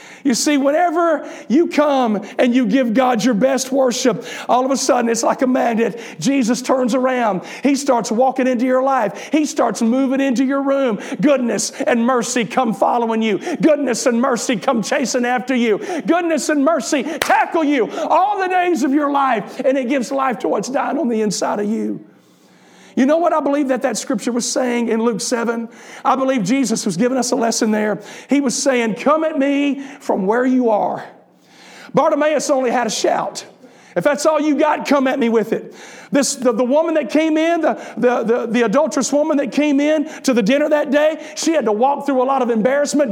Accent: American